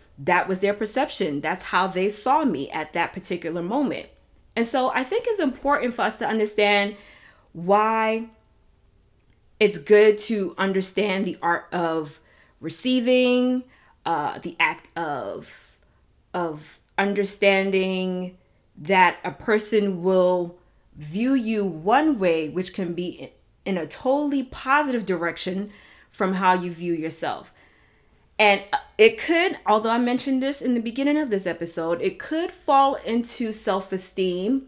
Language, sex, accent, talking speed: English, female, American, 135 wpm